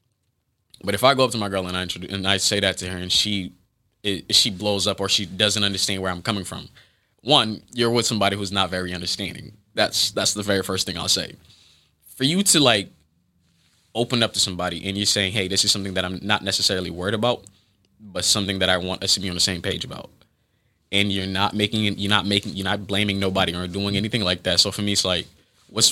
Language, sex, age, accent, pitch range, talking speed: English, male, 20-39, American, 95-115 Hz, 240 wpm